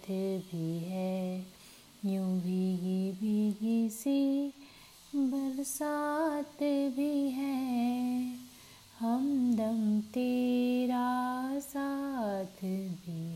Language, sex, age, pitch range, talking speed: Hindi, female, 30-49, 225-290 Hz, 60 wpm